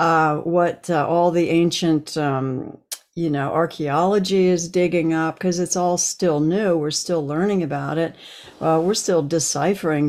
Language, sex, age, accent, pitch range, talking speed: English, female, 60-79, American, 150-180 Hz, 160 wpm